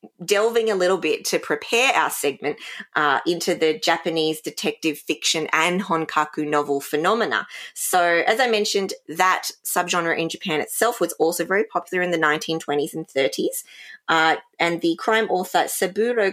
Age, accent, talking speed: 20-39, Australian, 155 wpm